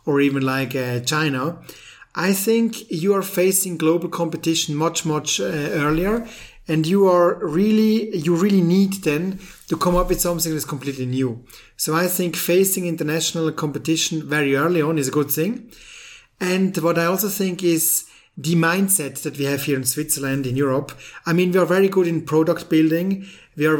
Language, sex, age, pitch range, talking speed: English, male, 30-49, 140-175 Hz, 175 wpm